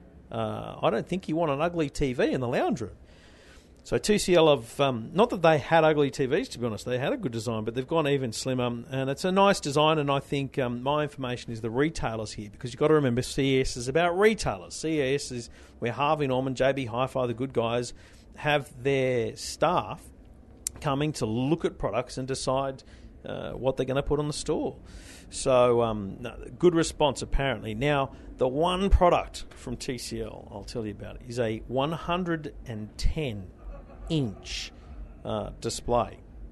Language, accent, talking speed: English, Australian, 190 wpm